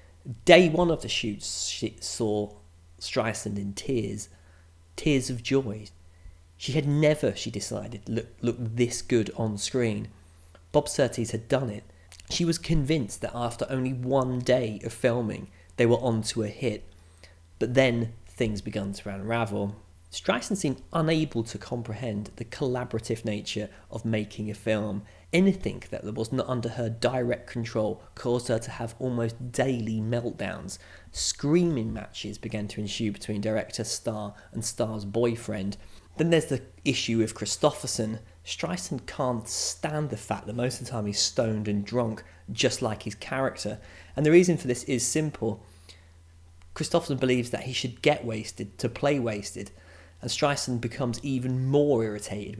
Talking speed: 155 wpm